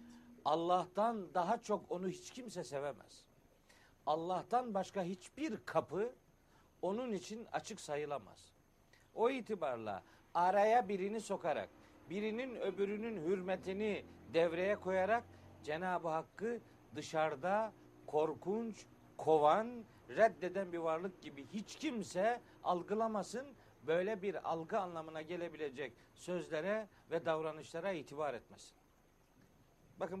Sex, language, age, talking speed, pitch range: male, Turkish, 60-79, 95 wpm, 150-205 Hz